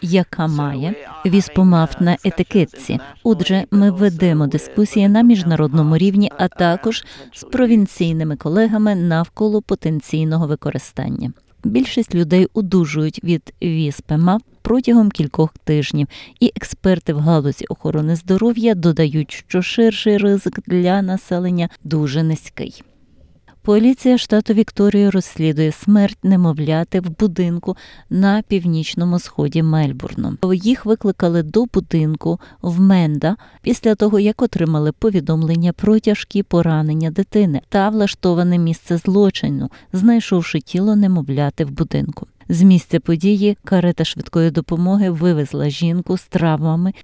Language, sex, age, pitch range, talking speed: Ukrainian, female, 30-49, 160-205 Hz, 110 wpm